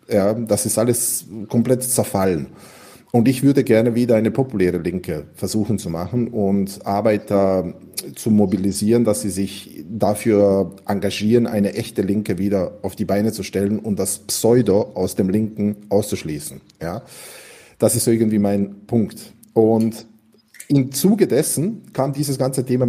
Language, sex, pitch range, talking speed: German, male, 110-135 Hz, 140 wpm